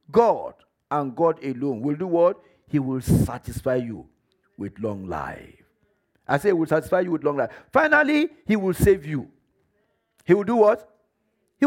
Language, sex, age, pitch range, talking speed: English, male, 50-69, 170-255 Hz, 170 wpm